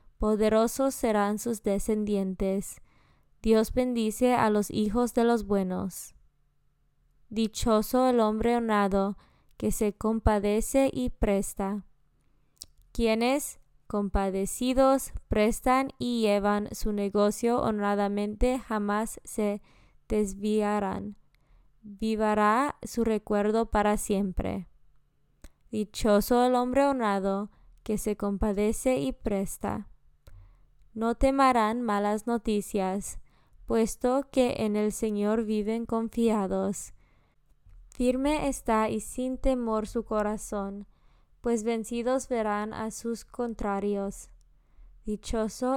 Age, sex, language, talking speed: 20-39, female, Spanish, 95 wpm